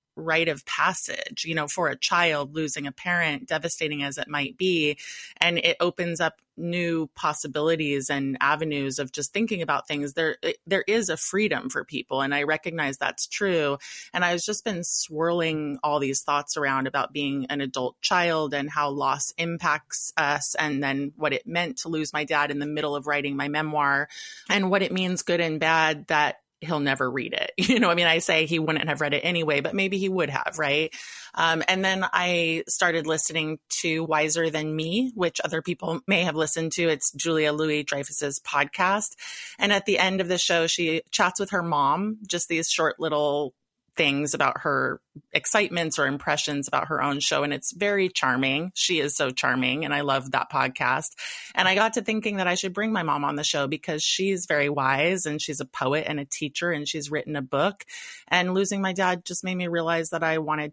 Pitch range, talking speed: 145-175 Hz, 205 wpm